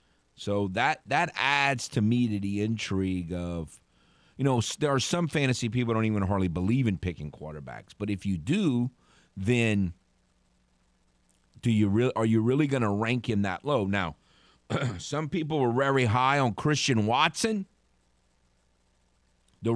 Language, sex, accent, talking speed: English, male, American, 155 wpm